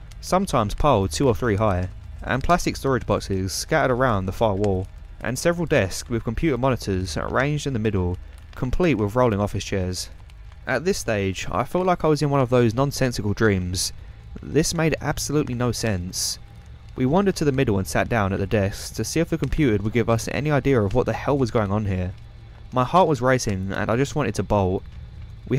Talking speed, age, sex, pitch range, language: 210 wpm, 20-39, male, 95-135 Hz, English